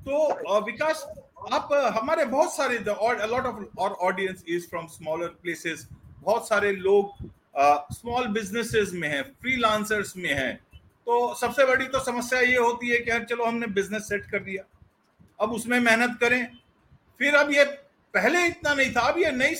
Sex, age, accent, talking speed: male, 50-69, Indian, 175 wpm